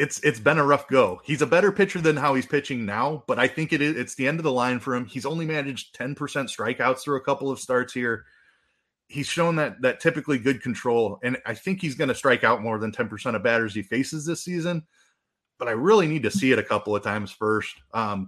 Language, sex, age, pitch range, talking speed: English, male, 30-49, 115-155 Hz, 250 wpm